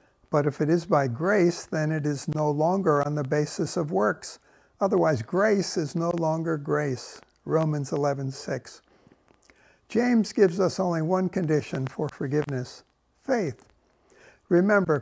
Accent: American